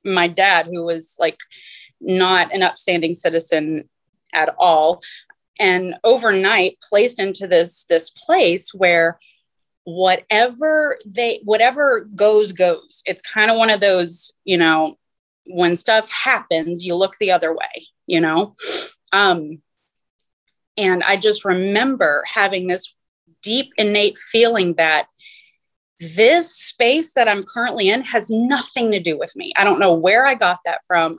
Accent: American